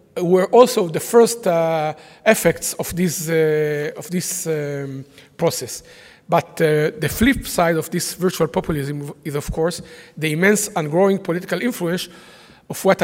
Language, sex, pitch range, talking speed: English, male, 160-200 Hz, 150 wpm